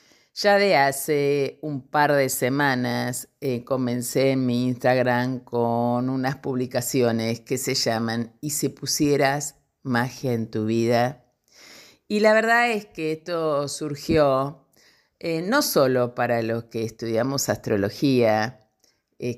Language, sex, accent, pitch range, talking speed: Spanish, female, Argentinian, 115-145 Hz, 125 wpm